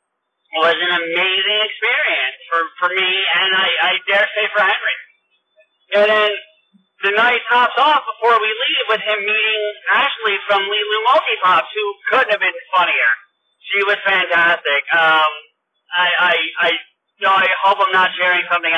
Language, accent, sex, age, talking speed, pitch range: English, American, male, 30-49, 160 wpm, 155-195 Hz